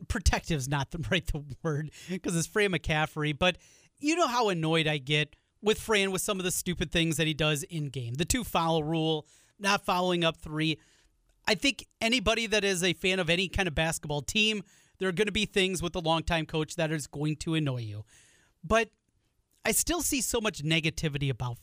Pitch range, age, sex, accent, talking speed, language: 155-215 Hz, 30-49, male, American, 205 wpm, English